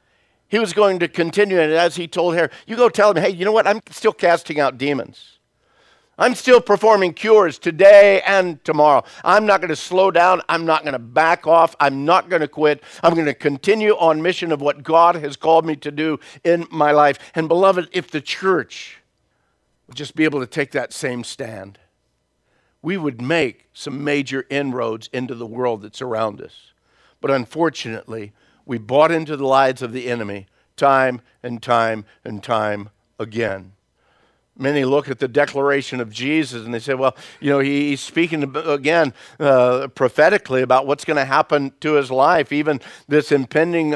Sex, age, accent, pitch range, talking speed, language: male, 50-69, American, 130-170 Hz, 185 wpm, English